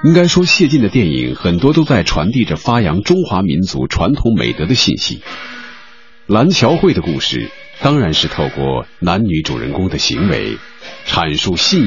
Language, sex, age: Chinese, male, 50-69